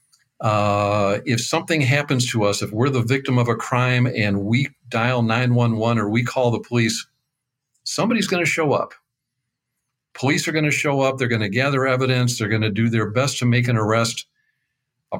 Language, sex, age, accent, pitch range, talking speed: English, male, 50-69, American, 115-140 Hz, 195 wpm